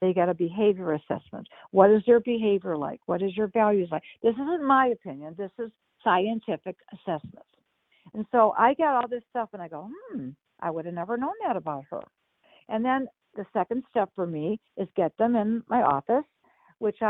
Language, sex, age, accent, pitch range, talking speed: English, female, 60-79, American, 185-240 Hz, 195 wpm